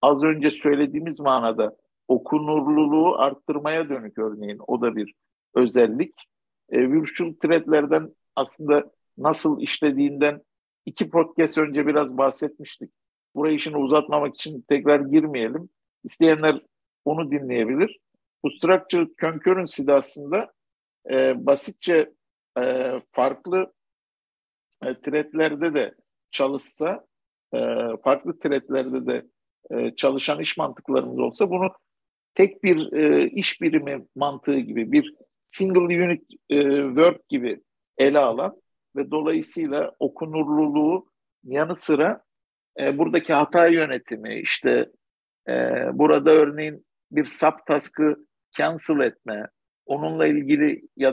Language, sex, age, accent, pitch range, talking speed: Turkish, male, 50-69, native, 140-165 Hz, 105 wpm